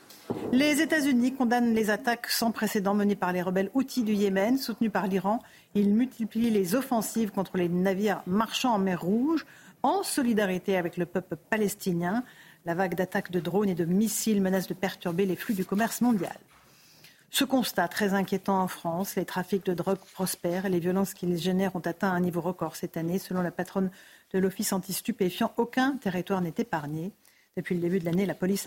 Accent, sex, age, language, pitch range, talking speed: French, female, 50-69, French, 185-225 Hz, 190 wpm